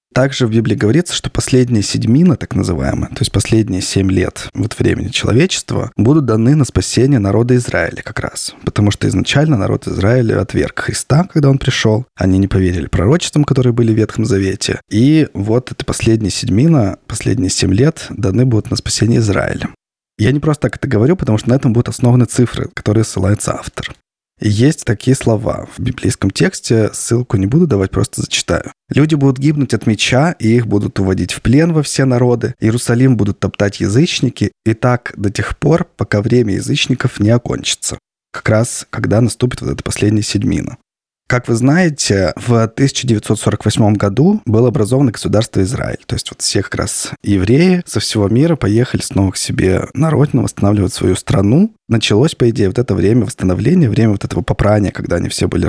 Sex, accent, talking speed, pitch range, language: male, native, 175 wpm, 100-135 Hz, Russian